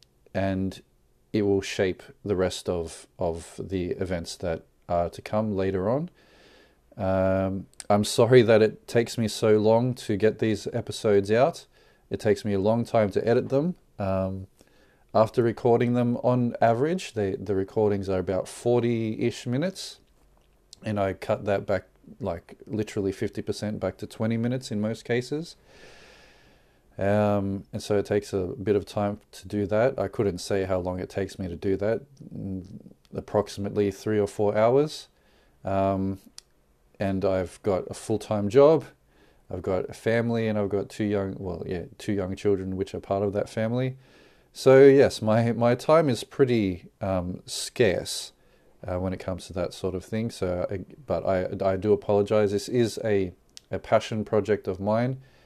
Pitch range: 95-115 Hz